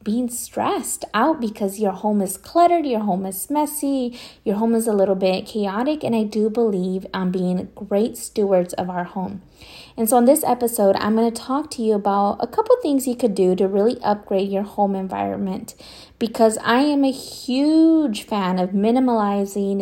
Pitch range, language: 195-240 Hz, English